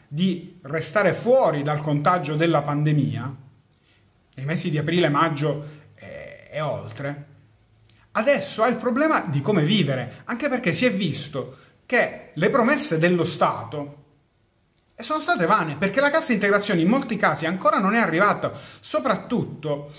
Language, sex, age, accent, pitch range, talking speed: Italian, male, 30-49, native, 145-205 Hz, 140 wpm